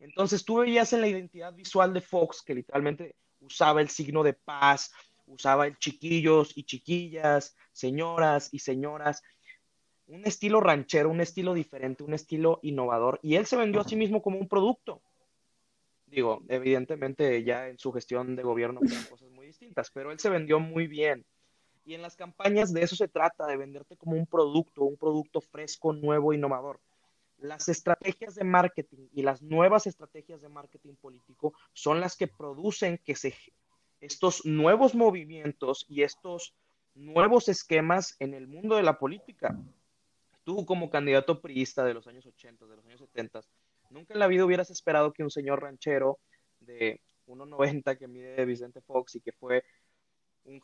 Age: 30-49